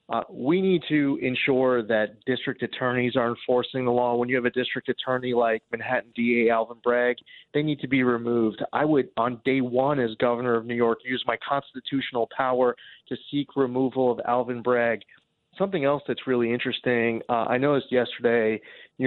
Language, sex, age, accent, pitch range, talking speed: English, male, 30-49, American, 115-130 Hz, 185 wpm